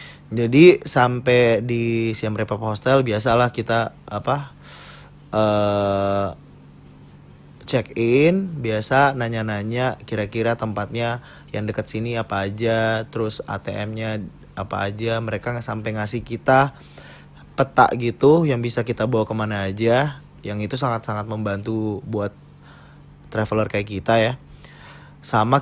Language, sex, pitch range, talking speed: Indonesian, male, 105-130 Hz, 110 wpm